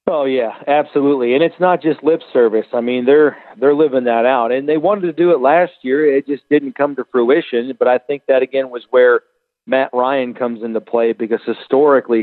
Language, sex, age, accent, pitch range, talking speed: English, male, 40-59, American, 120-150 Hz, 215 wpm